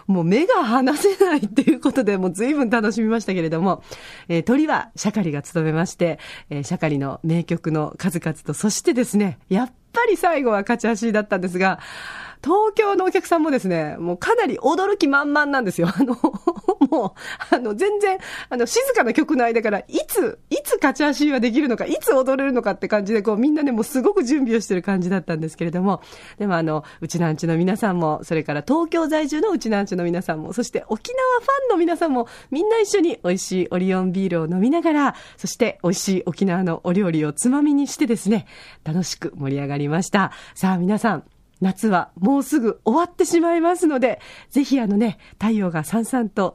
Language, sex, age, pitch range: Japanese, female, 40-59, 180-300 Hz